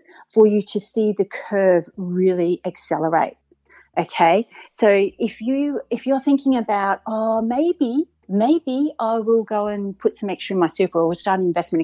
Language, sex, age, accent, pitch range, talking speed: English, female, 40-59, Australian, 185-255 Hz, 165 wpm